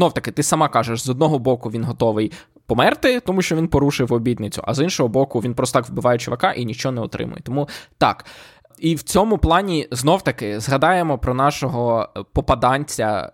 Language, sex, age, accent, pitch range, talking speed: Ukrainian, male, 20-39, native, 125-165 Hz, 185 wpm